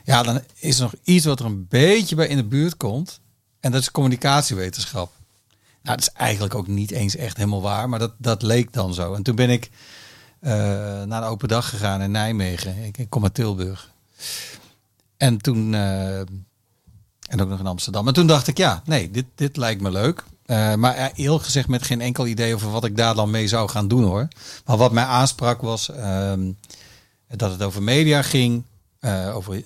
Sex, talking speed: male, 205 wpm